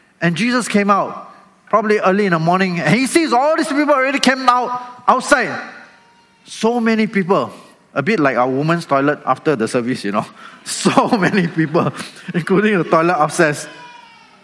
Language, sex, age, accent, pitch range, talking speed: English, male, 20-39, Malaysian, 150-210 Hz, 165 wpm